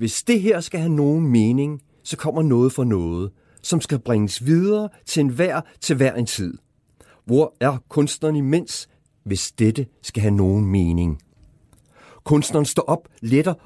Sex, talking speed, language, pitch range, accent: male, 160 wpm, Danish, 110-160 Hz, native